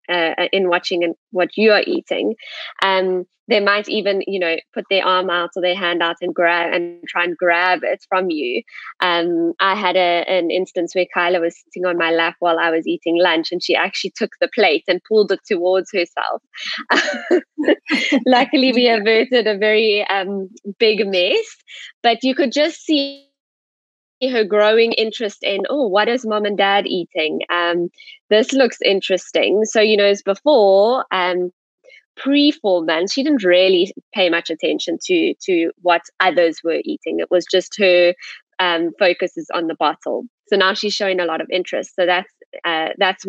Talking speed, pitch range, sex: 180 wpm, 175-225 Hz, female